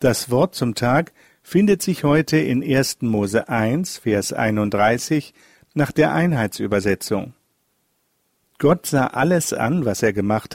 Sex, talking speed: male, 130 wpm